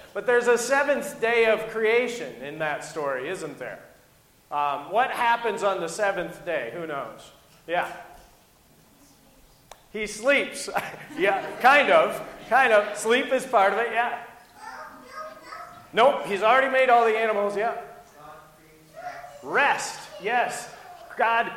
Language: English